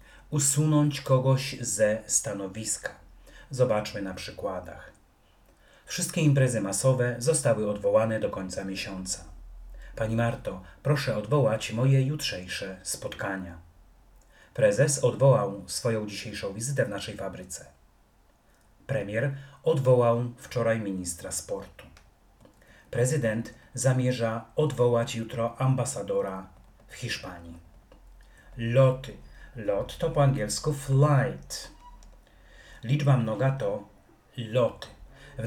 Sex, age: male, 40-59